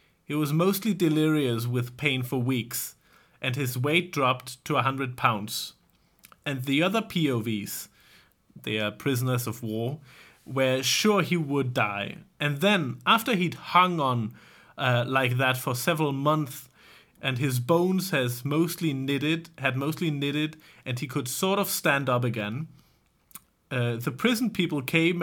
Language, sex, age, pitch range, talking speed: Danish, male, 30-49, 125-165 Hz, 150 wpm